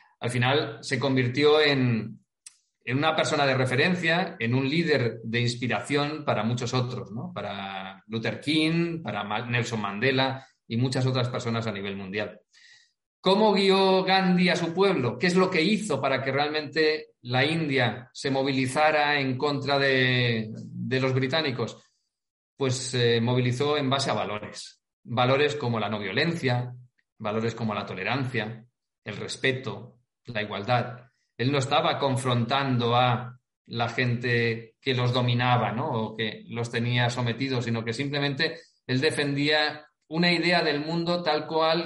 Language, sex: Spanish, male